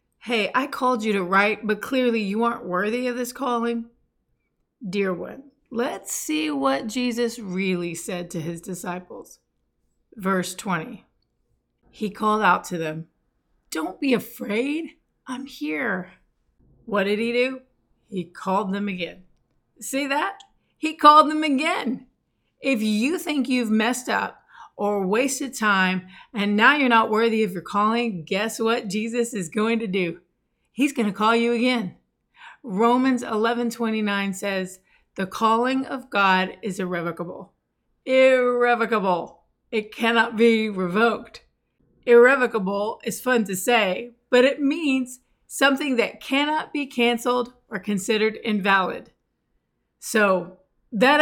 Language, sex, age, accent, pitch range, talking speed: English, female, 30-49, American, 195-255 Hz, 130 wpm